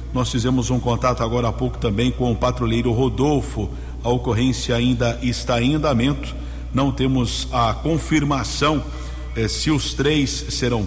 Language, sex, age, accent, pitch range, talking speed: Portuguese, male, 50-69, Brazilian, 115-135 Hz, 150 wpm